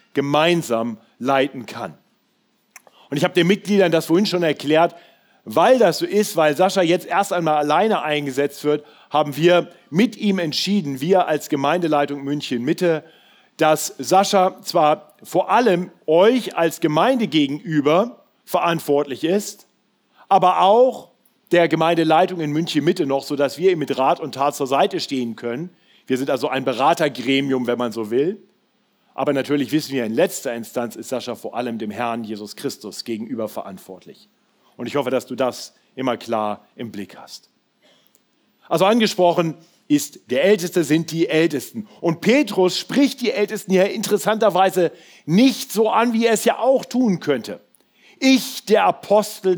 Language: German